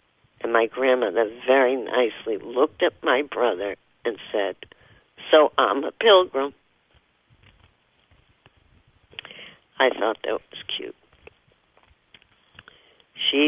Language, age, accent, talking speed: English, 60-79, American, 95 wpm